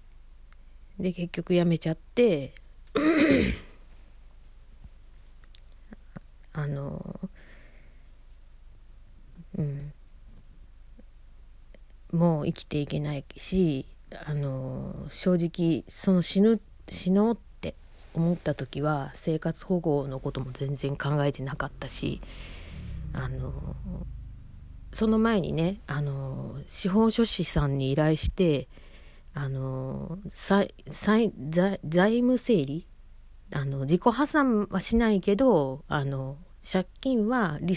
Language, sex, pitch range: Japanese, female, 130-190 Hz